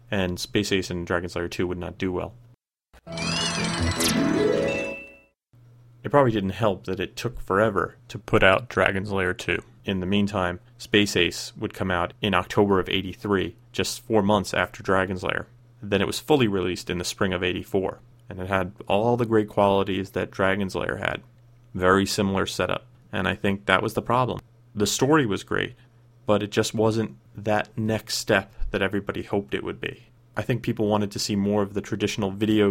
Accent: American